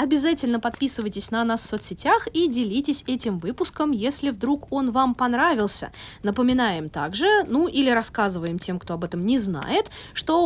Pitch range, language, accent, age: 195-280 Hz, Russian, native, 20-39